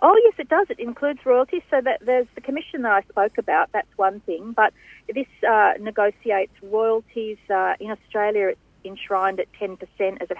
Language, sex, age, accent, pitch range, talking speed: English, female, 40-59, Australian, 185-235 Hz, 210 wpm